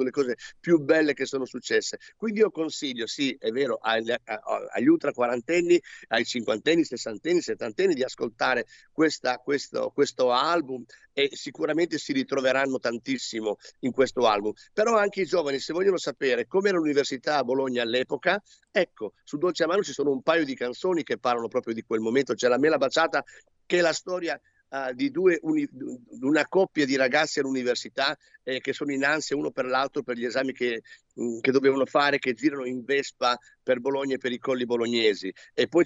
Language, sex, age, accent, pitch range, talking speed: Italian, male, 50-69, native, 130-185 Hz, 185 wpm